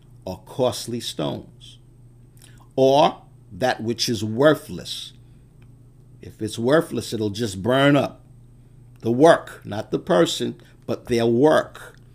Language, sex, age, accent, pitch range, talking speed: English, male, 60-79, American, 115-130 Hz, 115 wpm